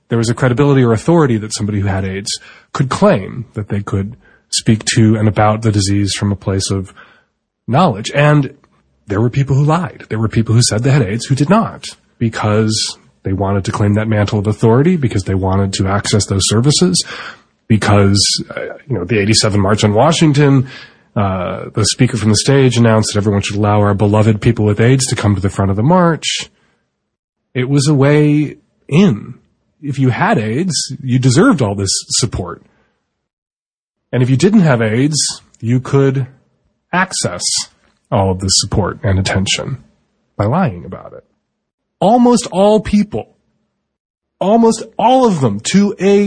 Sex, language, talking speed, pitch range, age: male, English, 175 wpm, 105-165 Hz, 20-39